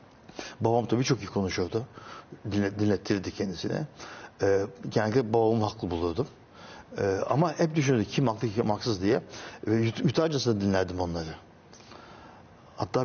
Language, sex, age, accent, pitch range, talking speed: Turkish, male, 60-79, native, 105-125 Hz, 130 wpm